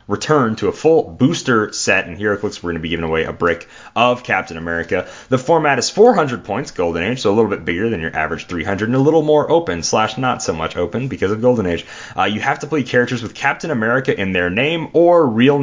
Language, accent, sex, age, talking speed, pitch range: English, American, male, 30-49, 245 wpm, 85-125 Hz